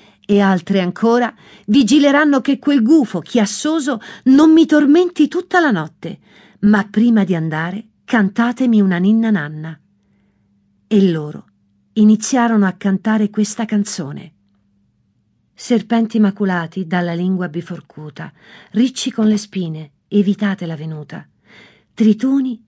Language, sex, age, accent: Italian, female, 50-69, native